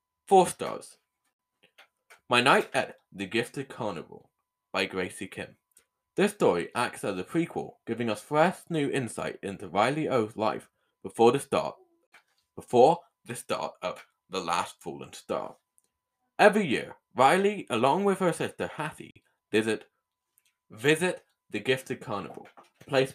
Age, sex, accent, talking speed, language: 20-39, male, British, 135 wpm, English